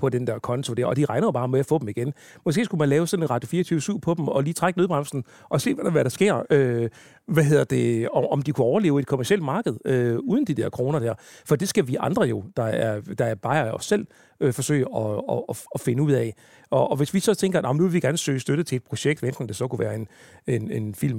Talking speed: 270 wpm